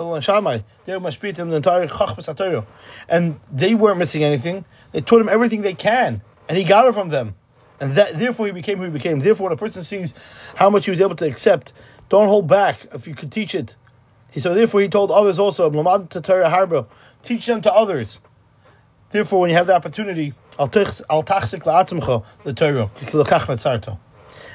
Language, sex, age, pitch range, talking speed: English, male, 40-59, 130-185 Hz, 150 wpm